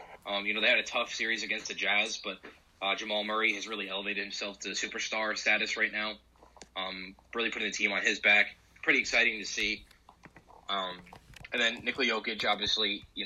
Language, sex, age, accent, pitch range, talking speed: English, male, 20-39, American, 100-110 Hz, 195 wpm